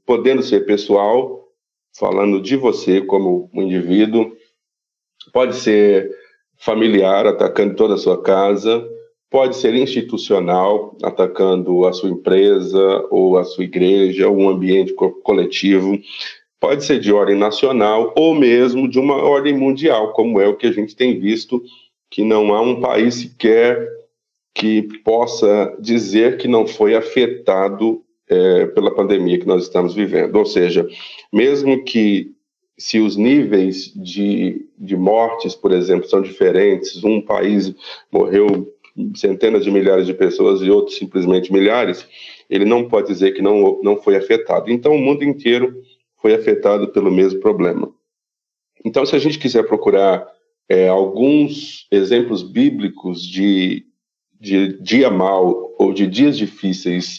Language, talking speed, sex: Portuguese, 140 wpm, male